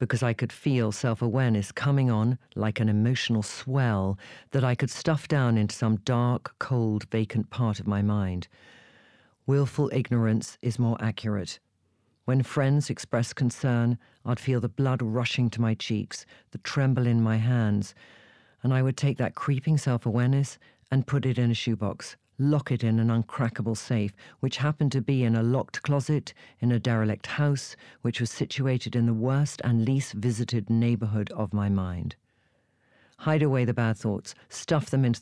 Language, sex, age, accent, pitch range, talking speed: English, female, 50-69, British, 110-135 Hz, 170 wpm